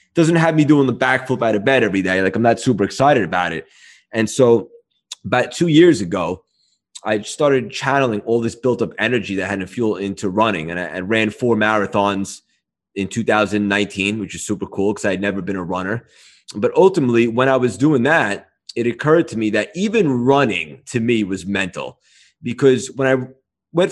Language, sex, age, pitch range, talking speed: English, male, 20-39, 105-140 Hz, 195 wpm